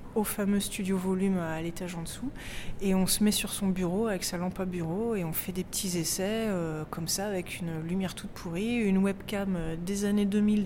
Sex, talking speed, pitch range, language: female, 220 wpm, 175-205 Hz, French